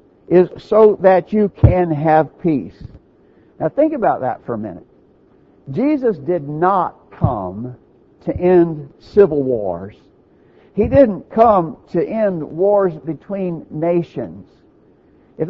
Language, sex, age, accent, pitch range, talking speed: English, male, 60-79, American, 160-215 Hz, 120 wpm